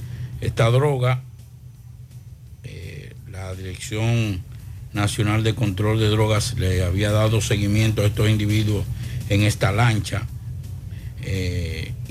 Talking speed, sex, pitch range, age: 105 wpm, male, 105-120 Hz, 60-79